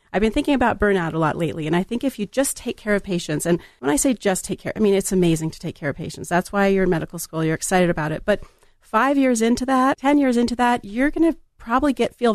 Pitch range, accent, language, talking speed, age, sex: 160-195 Hz, American, English, 285 wpm, 40-59, female